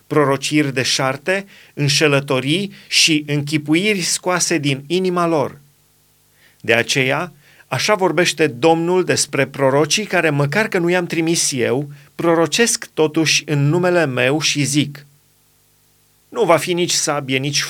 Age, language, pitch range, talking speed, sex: 30-49, Romanian, 140-175 Hz, 125 wpm, male